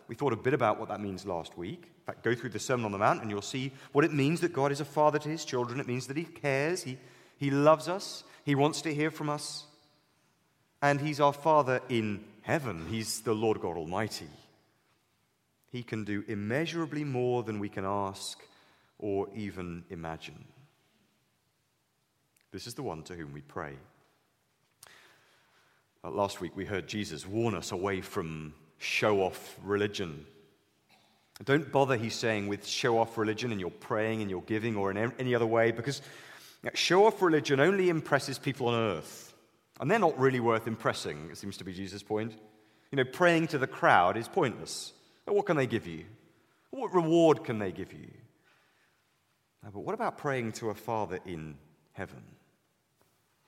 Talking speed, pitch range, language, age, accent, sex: 180 wpm, 105-145 Hz, English, 30-49, British, male